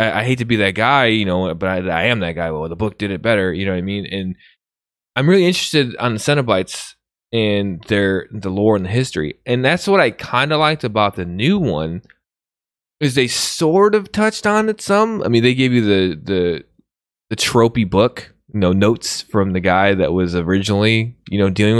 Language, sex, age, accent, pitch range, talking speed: English, male, 20-39, American, 90-125 Hz, 225 wpm